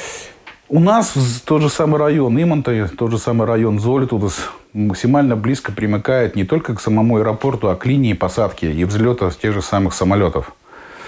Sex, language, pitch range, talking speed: male, Russian, 105-145 Hz, 170 wpm